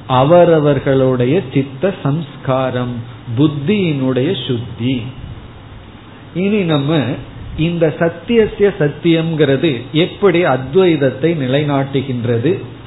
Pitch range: 130-175 Hz